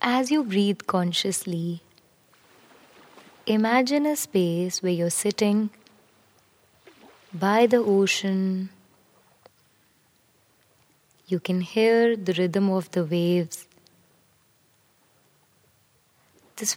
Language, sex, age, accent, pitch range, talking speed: Hindi, female, 20-39, native, 185-230 Hz, 80 wpm